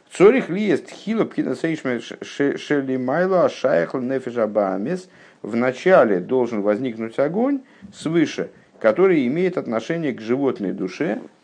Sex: male